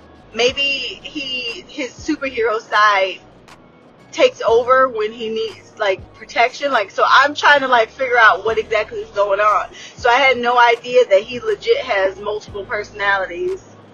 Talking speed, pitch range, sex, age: 155 wpm, 200-255 Hz, female, 20-39